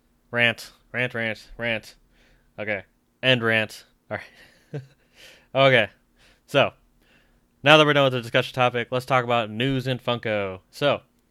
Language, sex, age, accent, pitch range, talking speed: English, male, 20-39, American, 105-125 Hz, 140 wpm